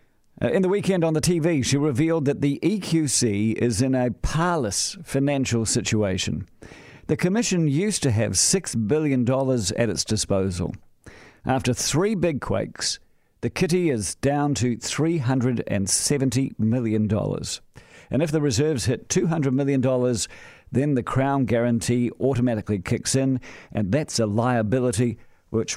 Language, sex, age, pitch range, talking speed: English, male, 50-69, 110-145 Hz, 135 wpm